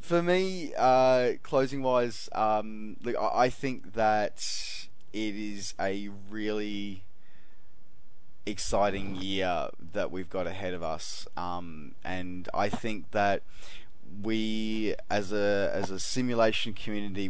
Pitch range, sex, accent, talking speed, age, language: 95-115 Hz, male, Australian, 120 wpm, 20-39, English